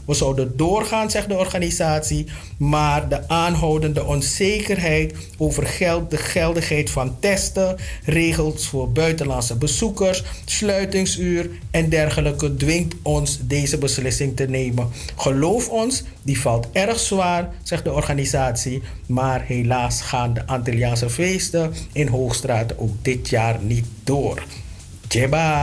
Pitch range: 125-175 Hz